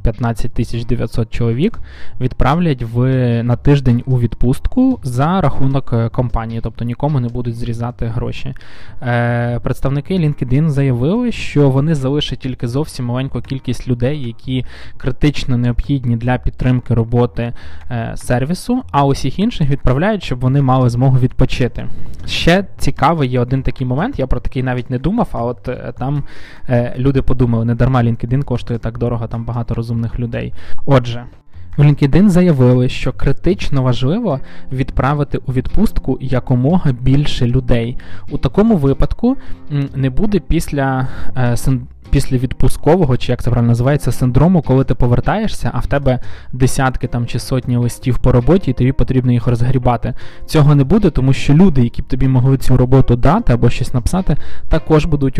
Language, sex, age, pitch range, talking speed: Ukrainian, male, 20-39, 120-140 Hz, 150 wpm